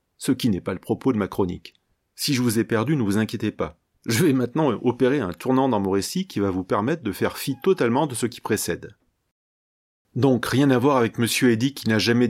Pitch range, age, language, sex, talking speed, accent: 95-120 Hz, 30-49, French, male, 240 wpm, French